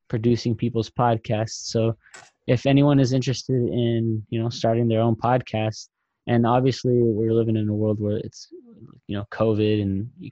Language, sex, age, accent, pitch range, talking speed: English, male, 20-39, American, 105-115 Hz, 170 wpm